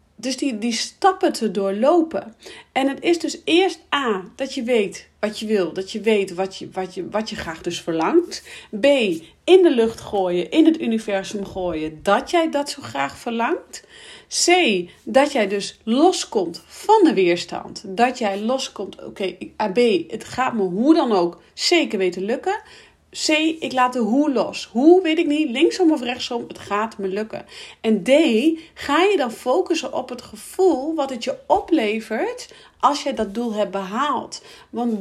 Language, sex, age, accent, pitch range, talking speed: Dutch, female, 40-59, Dutch, 215-325 Hz, 180 wpm